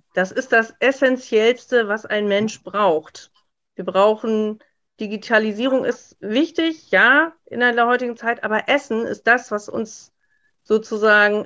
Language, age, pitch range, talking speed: German, 40-59, 190-240 Hz, 130 wpm